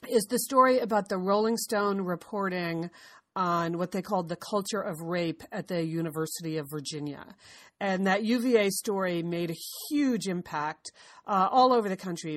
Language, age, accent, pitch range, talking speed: English, 40-59, American, 165-205 Hz, 165 wpm